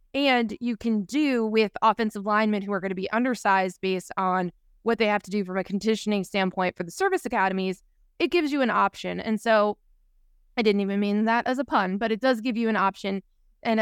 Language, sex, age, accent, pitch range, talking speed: English, female, 20-39, American, 190-230 Hz, 220 wpm